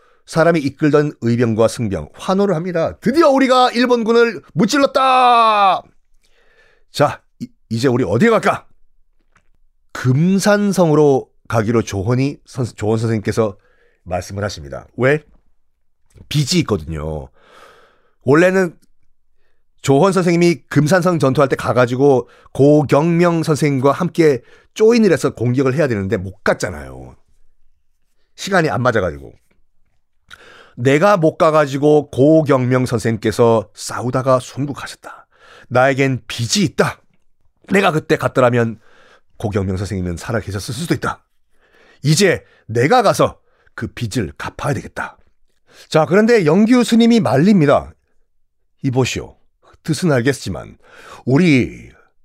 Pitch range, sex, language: 115-170 Hz, male, Korean